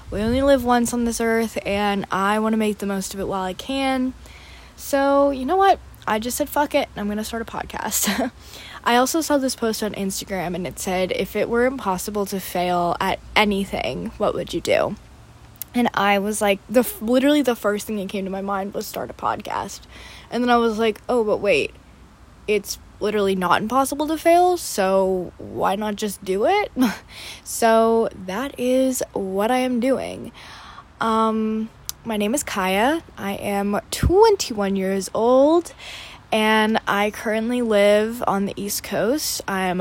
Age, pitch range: 10-29, 200-255 Hz